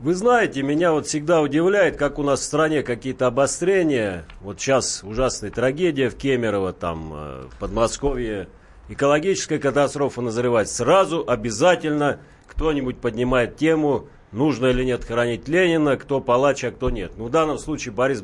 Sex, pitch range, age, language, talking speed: male, 120-160 Hz, 40-59, Russian, 150 wpm